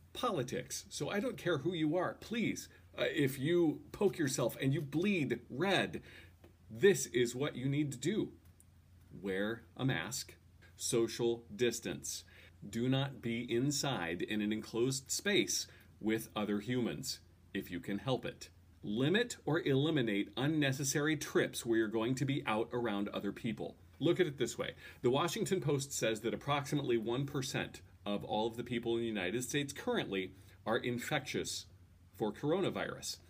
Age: 40-59